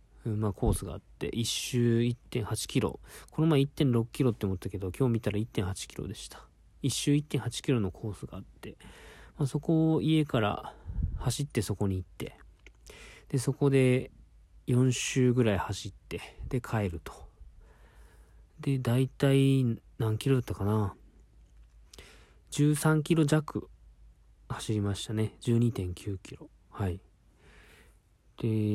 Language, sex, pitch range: Japanese, male, 90-130 Hz